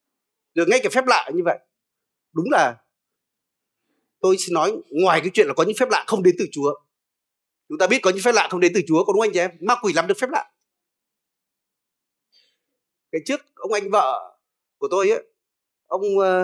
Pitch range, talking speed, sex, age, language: 170-265 Hz, 205 wpm, male, 30-49, Vietnamese